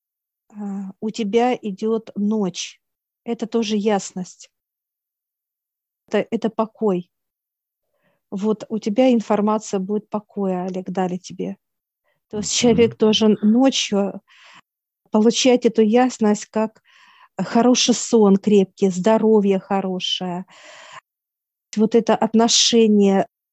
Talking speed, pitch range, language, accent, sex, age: 90 wpm, 195-220 Hz, Russian, native, female, 40-59